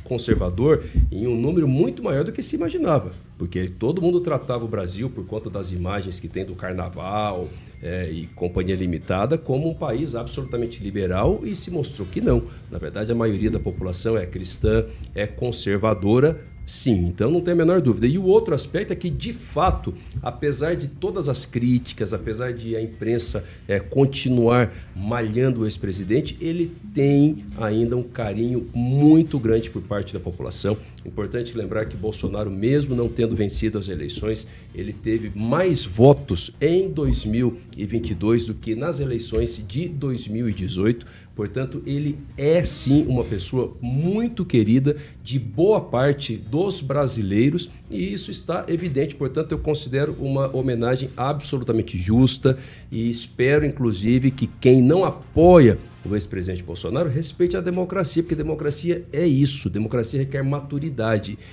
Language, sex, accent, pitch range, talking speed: Portuguese, male, Brazilian, 105-145 Hz, 150 wpm